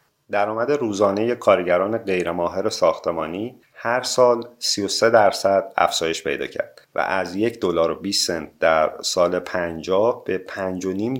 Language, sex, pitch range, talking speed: Persian, male, 90-115 Hz, 135 wpm